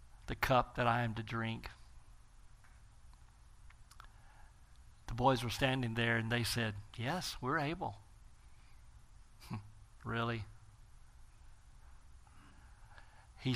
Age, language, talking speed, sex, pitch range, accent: 50-69, English, 90 wpm, male, 115-150 Hz, American